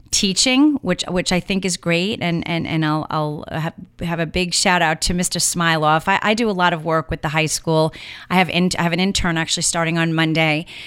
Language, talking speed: English, 235 wpm